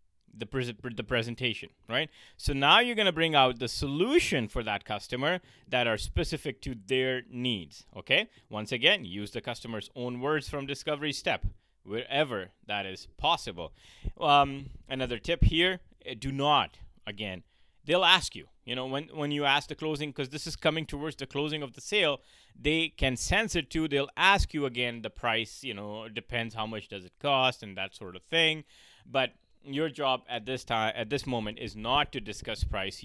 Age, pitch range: 30-49, 105-140 Hz